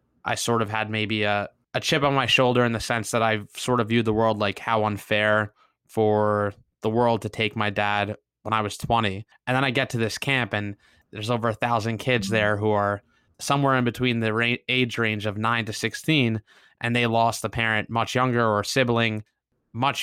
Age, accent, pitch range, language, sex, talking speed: 20-39, American, 105-120 Hz, English, male, 220 wpm